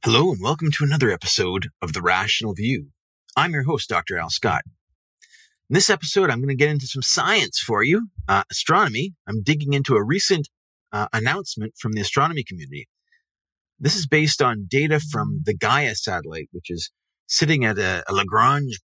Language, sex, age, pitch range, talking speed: English, male, 30-49, 105-145 Hz, 180 wpm